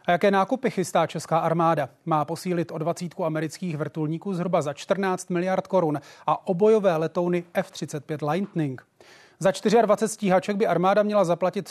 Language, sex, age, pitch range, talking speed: Czech, male, 30-49, 160-190 Hz, 150 wpm